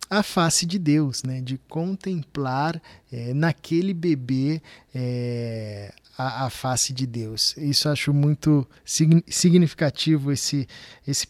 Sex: male